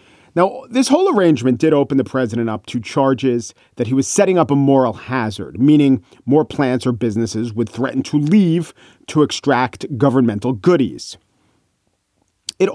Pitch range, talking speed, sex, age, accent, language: 125-165 Hz, 155 wpm, male, 40-59, American, English